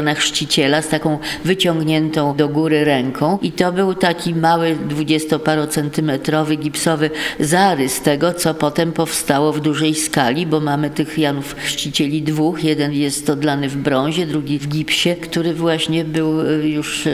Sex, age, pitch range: female, 40-59, 150-170 Hz